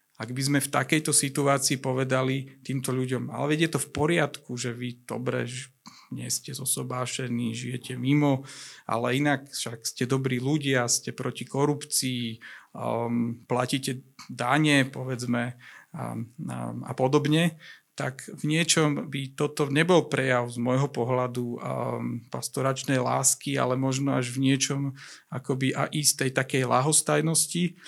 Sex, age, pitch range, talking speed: male, 40-59, 125-145 Hz, 140 wpm